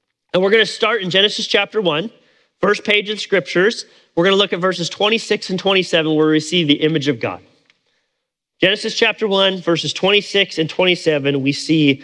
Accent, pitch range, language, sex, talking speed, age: American, 155-205 Hz, English, male, 185 wpm, 30-49